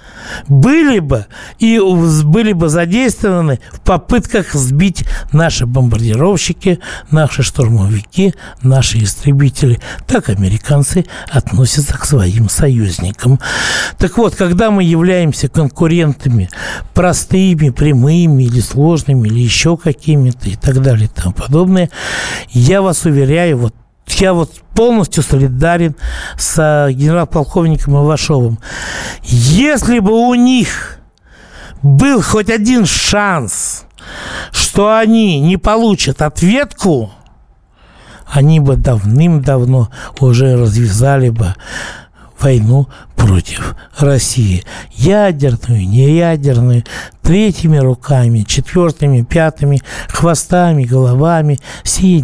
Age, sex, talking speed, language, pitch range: 60-79, male, 95 wpm, Russian, 125-170 Hz